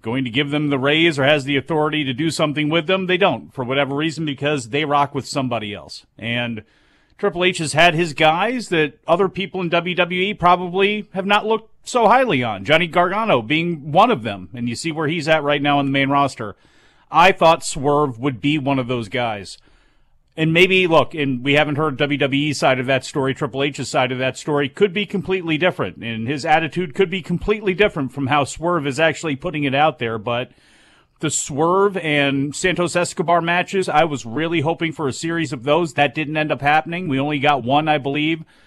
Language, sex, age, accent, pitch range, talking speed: English, male, 40-59, American, 140-180 Hz, 215 wpm